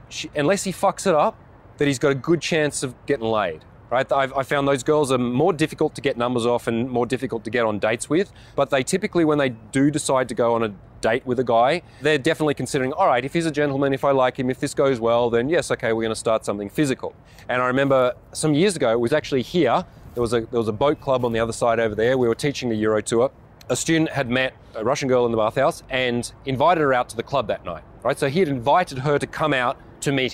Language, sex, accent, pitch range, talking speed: English, male, Australian, 115-145 Hz, 265 wpm